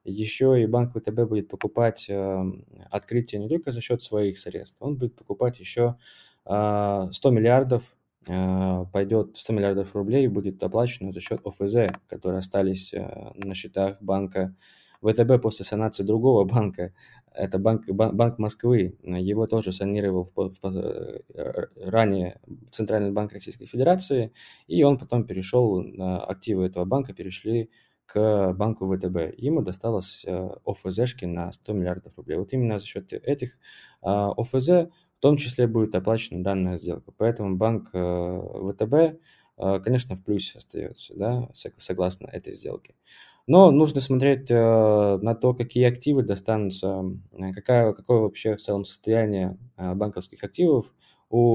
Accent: native